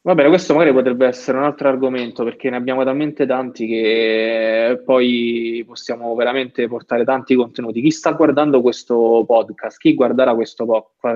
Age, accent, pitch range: 20-39, native, 120-145 Hz